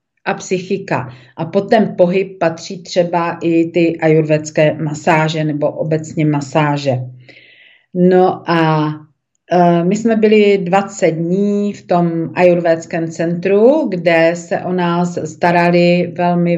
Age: 40-59